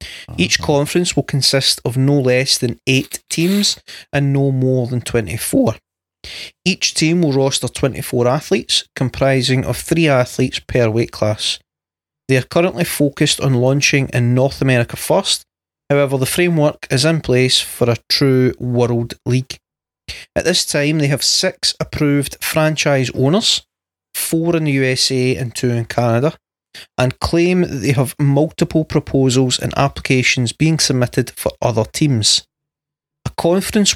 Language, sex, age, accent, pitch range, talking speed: English, male, 30-49, British, 125-150 Hz, 145 wpm